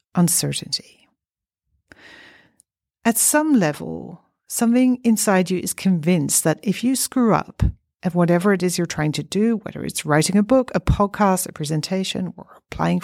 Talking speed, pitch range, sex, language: 150 wpm, 170-235 Hz, female, English